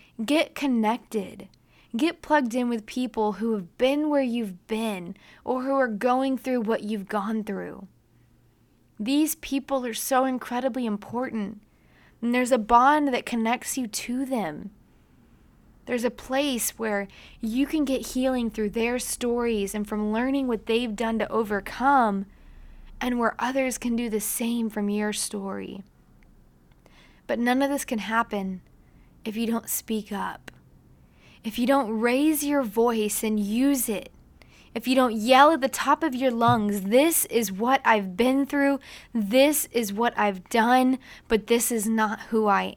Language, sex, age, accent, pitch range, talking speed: English, female, 20-39, American, 210-255 Hz, 160 wpm